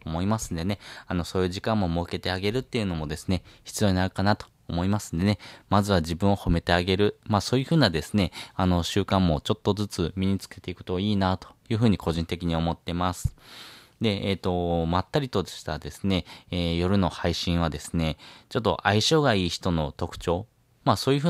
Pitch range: 85-110 Hz